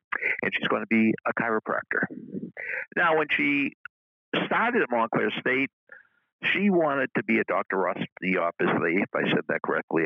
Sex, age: male, 60-79